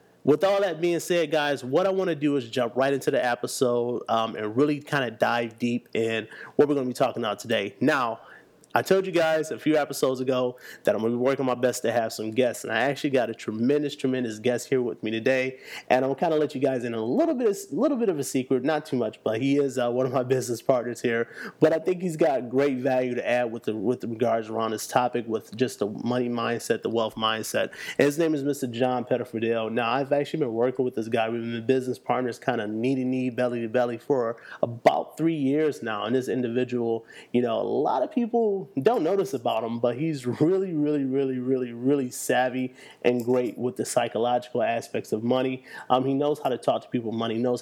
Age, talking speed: 30-49, 240 wpm